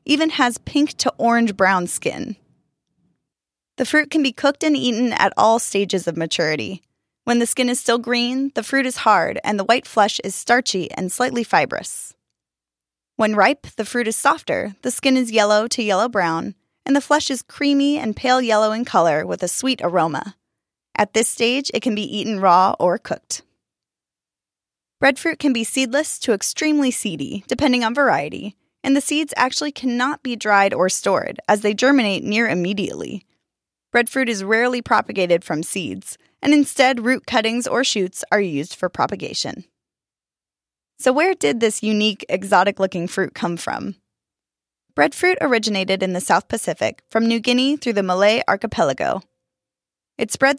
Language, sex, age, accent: English, female, 10-29, American